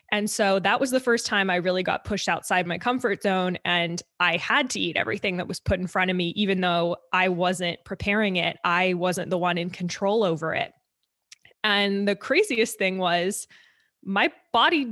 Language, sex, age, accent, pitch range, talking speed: English, female, 20-39, American, 175-215 Hz, 195 wpm